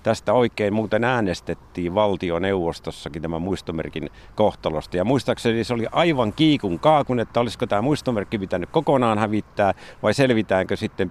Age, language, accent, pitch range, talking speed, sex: 50-69, Finnish, native, 95-120 Hz, 140 wpm, male